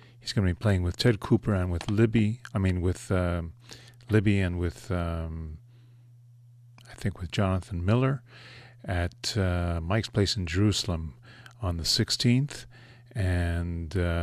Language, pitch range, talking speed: English, 90-120 Hz, 145 wpm